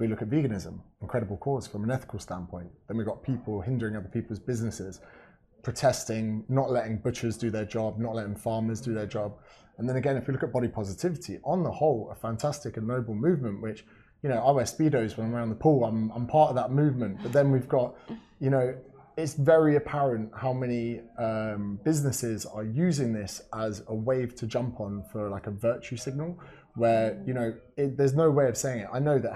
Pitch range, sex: 110-135 Hz, male